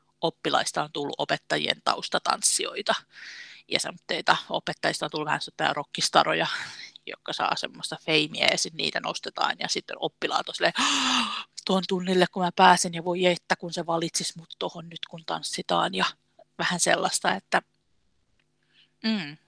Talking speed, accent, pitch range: 140 wpm, native, 160-185 Hz